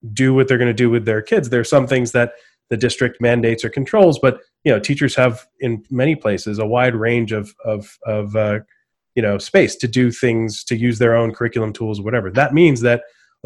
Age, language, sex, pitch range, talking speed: 30-49, English, male, 110-125 Hz, 230 wpm